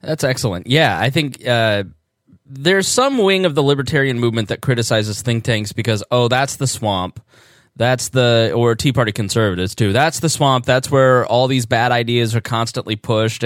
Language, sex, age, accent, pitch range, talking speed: English, male, 10-29, American, 110-140 Hz, 185 wpm